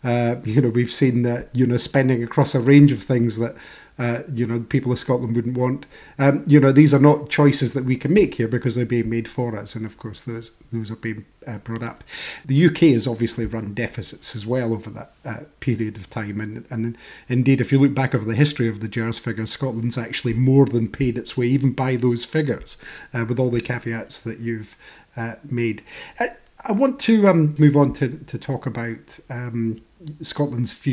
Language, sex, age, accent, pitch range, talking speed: English, male, 30-49, British, 115-135 Hz, 220 wpm